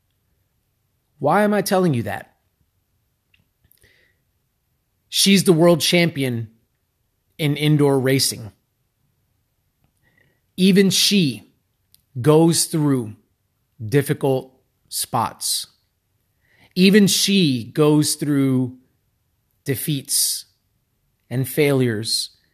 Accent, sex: American, male